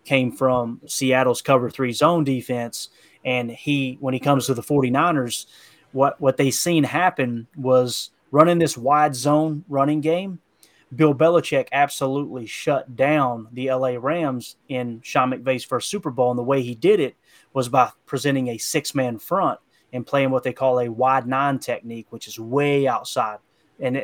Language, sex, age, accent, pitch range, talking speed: English, male, 30-49, American, 125-145 Hz, 165 wpm